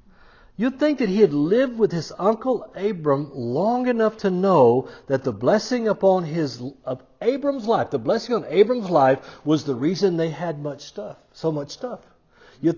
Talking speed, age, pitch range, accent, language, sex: 175 wpm, 60-79, 140-230 Hz, American, English, male